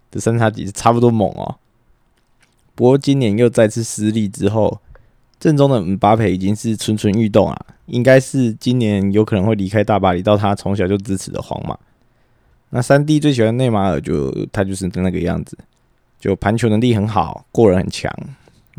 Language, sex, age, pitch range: Chinese, male, 20-39, 100-130 Hz